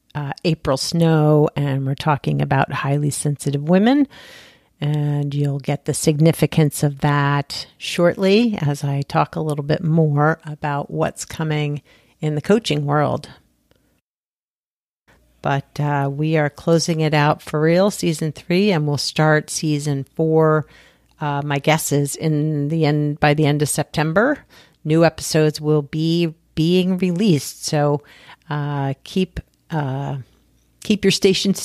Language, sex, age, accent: English, female, 50-69, American